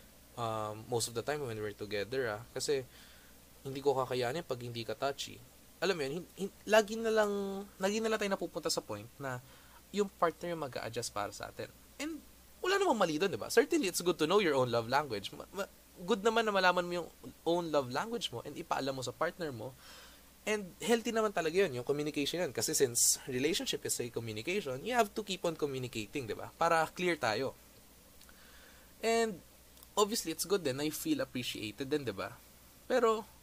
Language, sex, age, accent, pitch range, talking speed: Filipino, male, 20-39, native, 115-195 Hz, 195 wpm